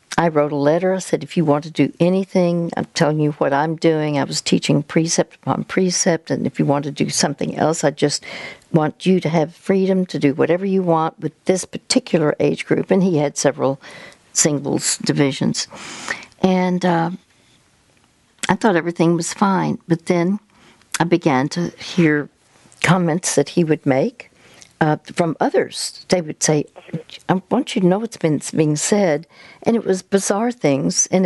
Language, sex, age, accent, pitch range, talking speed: English, female, 60-79, American, 150-185 Hz, 180 wpm